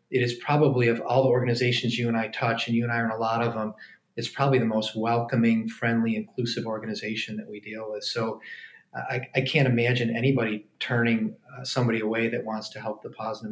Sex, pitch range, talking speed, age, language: male, 115-125 Hz, 215 wpm, 30-49, English